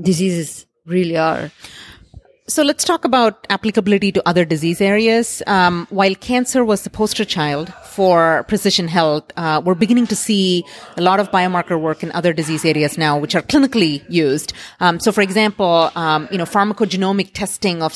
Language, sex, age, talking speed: English, female, 30-49, 170 wpm